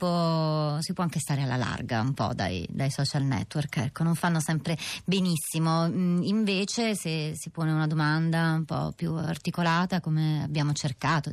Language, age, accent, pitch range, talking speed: Italian, 30-49, native, 155-180 Hz, 160 wpm